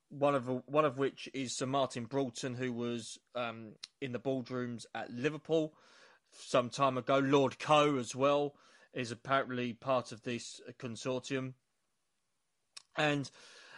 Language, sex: English, male